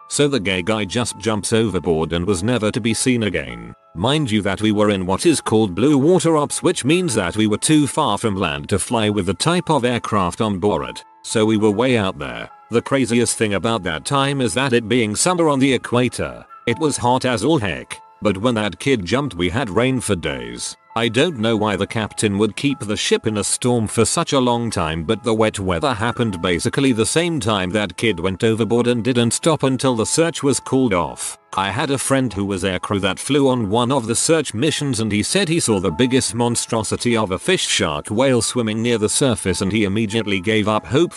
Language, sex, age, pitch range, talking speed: English, male, 40-59, 105-135 Hz, 230 wpm